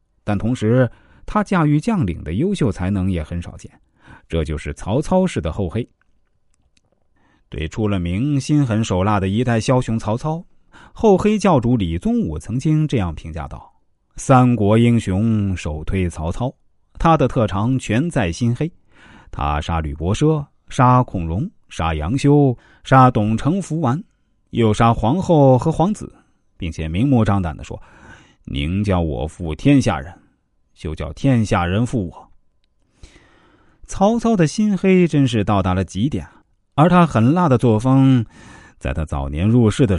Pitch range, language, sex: 90-140 Hz, Chinese, male